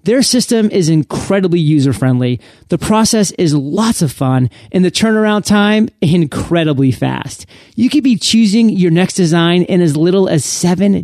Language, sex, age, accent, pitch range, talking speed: English, male, 30-49, American, 150-210 Hz, 160 wpm